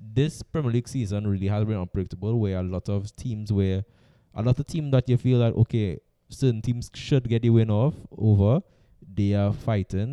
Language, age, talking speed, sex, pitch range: English, 20-39, 200 wpm, male, 105-130 Hz